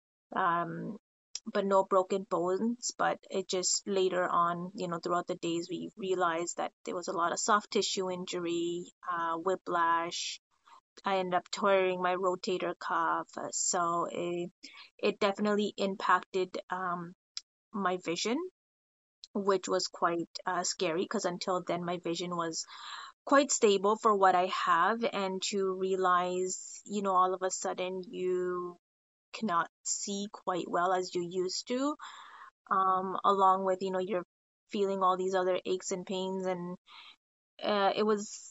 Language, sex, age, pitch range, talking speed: English, female, 20-39, 175-195 Hz, 150 wpm